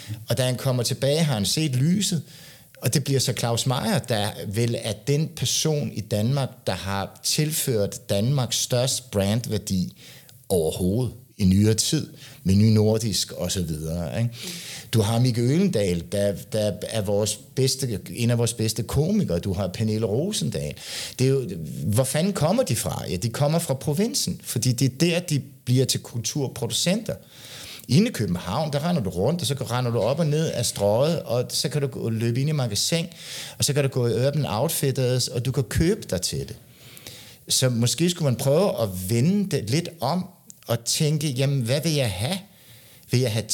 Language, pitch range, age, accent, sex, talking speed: Danish, 115-150 Hz, 60-79, native, male, 185 wpm